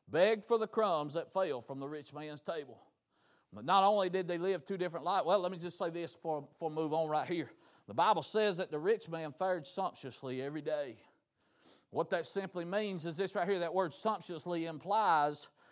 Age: 50-69